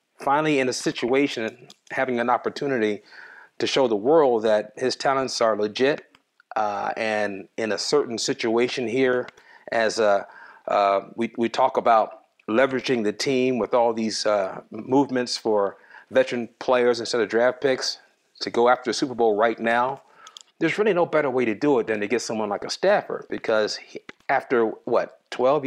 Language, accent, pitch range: English, American, 115-145 Hz